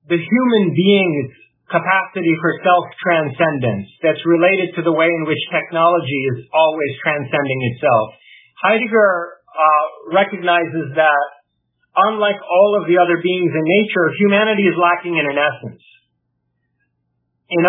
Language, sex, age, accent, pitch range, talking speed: English, male, 50-69, American, 160-200 Hz, 125 wpm